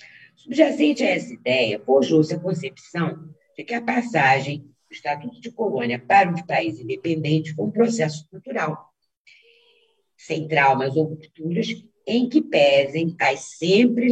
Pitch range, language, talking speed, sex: 155-245 Hz, Portuguese, 140 wpm, female